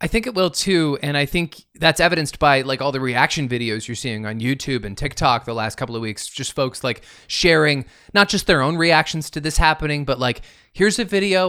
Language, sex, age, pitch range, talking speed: English, male, 20-39, 115-160 Hz, 230 wpm